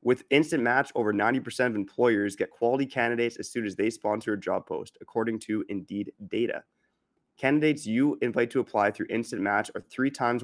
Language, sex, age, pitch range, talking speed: English, male, 20-39, 105-125 Hz, 190 wpm